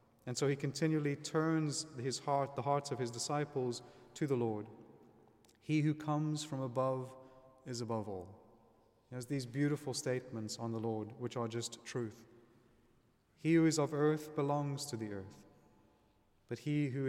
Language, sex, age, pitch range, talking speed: English, male, 30-49, 115-135 Hz, 165 wpm